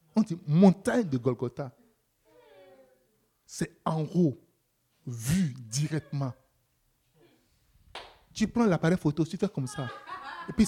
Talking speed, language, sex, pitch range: 110 wpm, French, male, 130-200 Hz